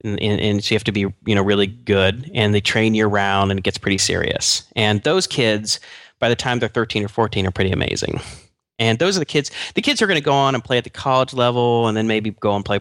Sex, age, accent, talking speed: male, 30-49, American, 265 wpm